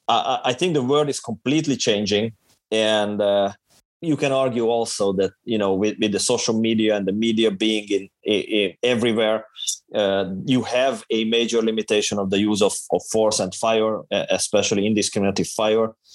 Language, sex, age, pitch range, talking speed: English, male, 30-49, 105-120 Hz, 170 wpm